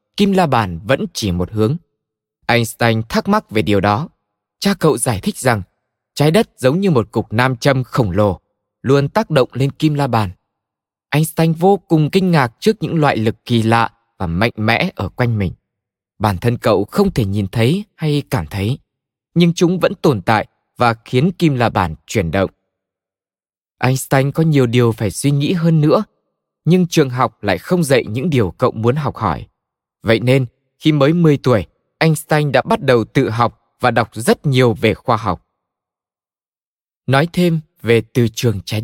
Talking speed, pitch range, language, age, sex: 185 wpm, 115-160 Hz, Vietnamese, 20-39, male